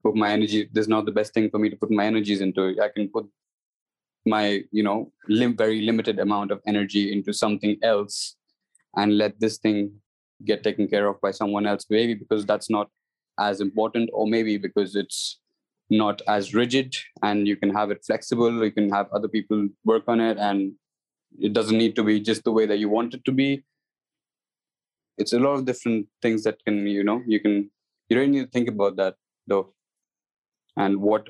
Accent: Indian